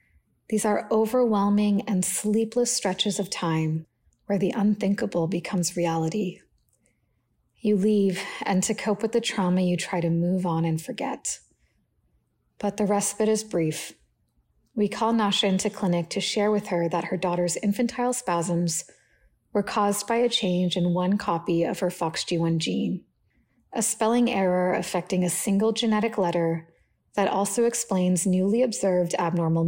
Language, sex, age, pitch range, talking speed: English, female, 30-49, 175-215 Hz, 150 wpm